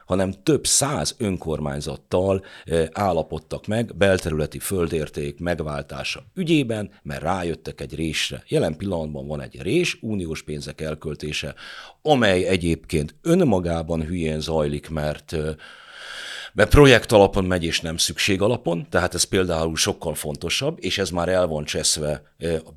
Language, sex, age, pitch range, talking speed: Hungarian, male, 50-69, 75-100 Hz, 125 wpm